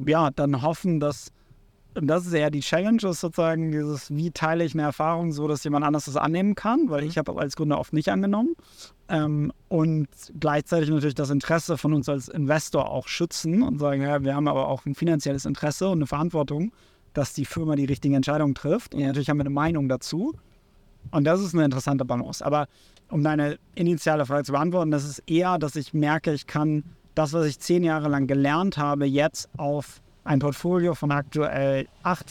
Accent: German